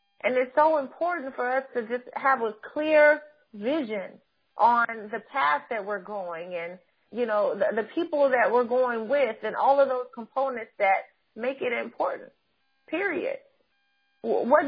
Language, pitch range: English, 250-305 Hz